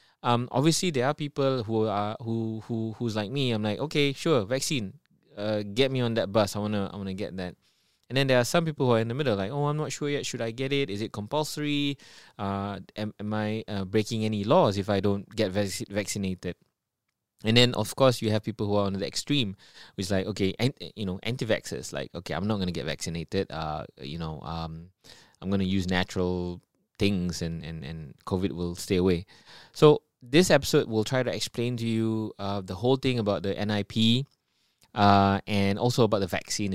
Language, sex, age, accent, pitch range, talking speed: English, male, 20-39, Malaysian, 95-120 Hz, 215 wpm